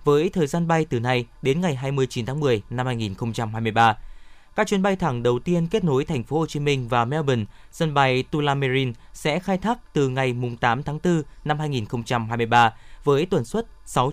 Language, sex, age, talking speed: Vietnamese, male, 20-39, 195 wpm